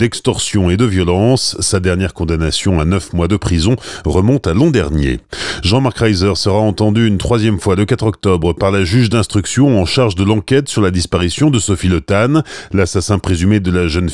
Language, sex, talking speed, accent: French, male, 190 wpm, French